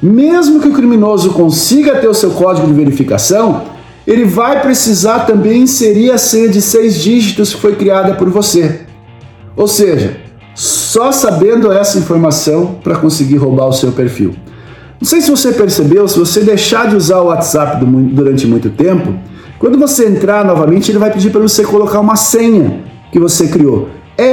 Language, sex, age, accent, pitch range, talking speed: Portuguese, male, 50-69, Brazilian, 135-205 Hz, 170 wpm